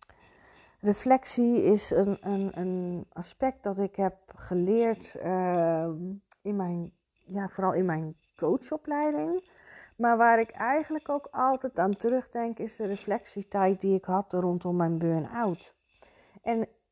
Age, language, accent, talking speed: 40-59, Dutch, Dutch, 115 wpm